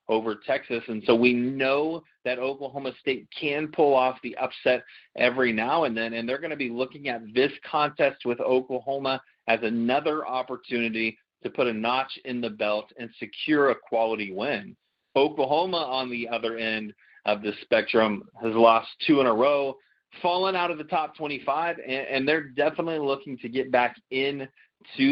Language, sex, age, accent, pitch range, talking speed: English, male, 30-49, American, 115-150 Hz, 175 wpm